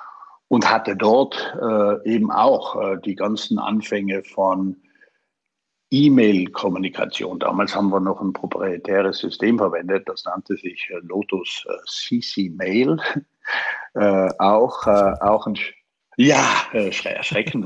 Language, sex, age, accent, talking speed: English, male, 50-69, German, 110 wpm